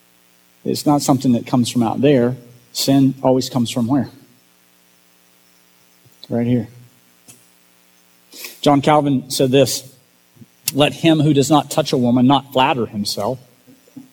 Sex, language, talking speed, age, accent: male, English, 125 wpm, 40-59, American